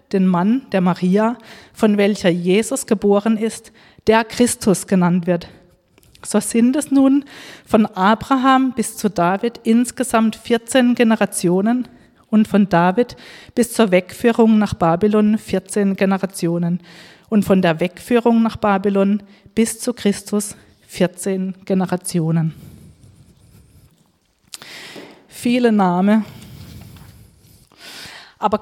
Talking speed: 105 wpm